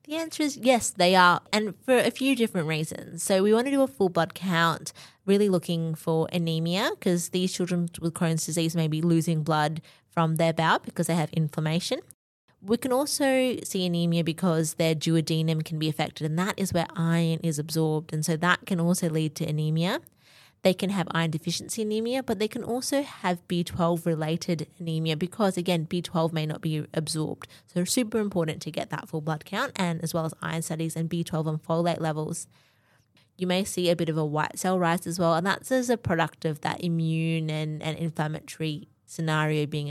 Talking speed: 200 wpm